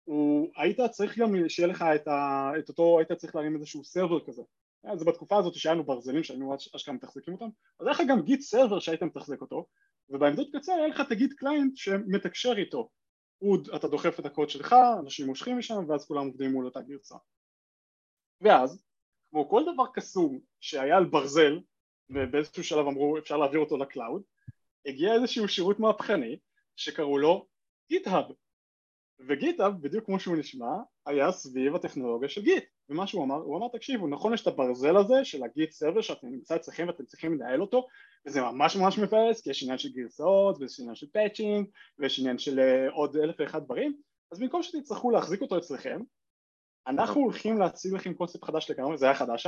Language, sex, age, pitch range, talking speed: Hebrew, male, 20-39, 145-220 Hz, 175 wpm